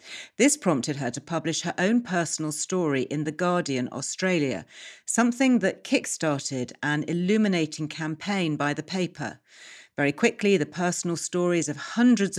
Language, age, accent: English, 40-59, British